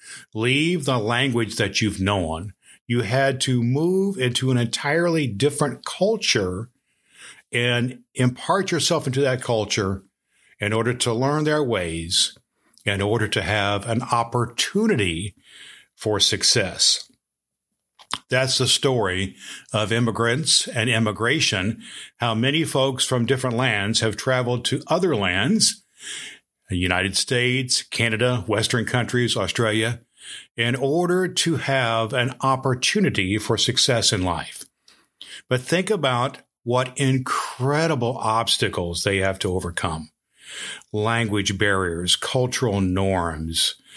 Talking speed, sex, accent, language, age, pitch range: 115 wpm, male, American, English, 50-69, 100-130 Hz